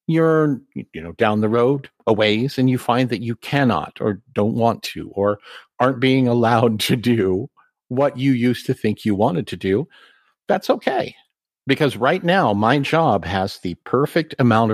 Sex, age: male, 50-69